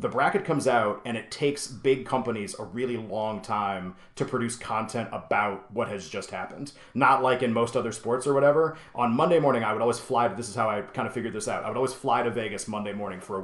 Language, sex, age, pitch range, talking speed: English, male, 30-49, 110-130 Hz, 250 wpm